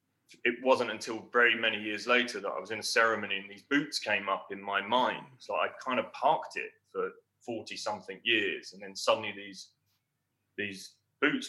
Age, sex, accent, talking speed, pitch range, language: 20-39, male, British, 195 wpm, 105-135 Hz, English